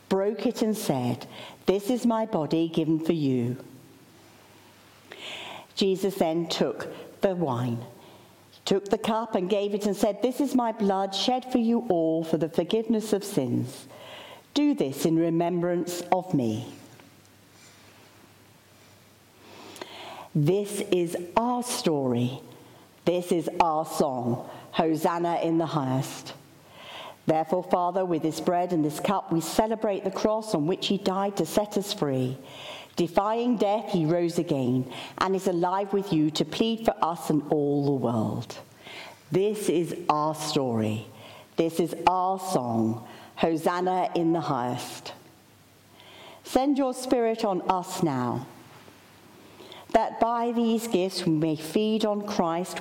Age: 50-69